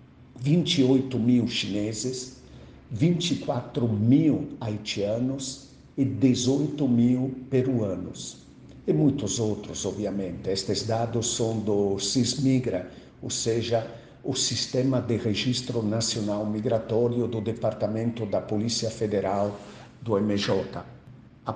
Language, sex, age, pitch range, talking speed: Portuguese, male, 60-79, 110-130 Hz, 95 wpm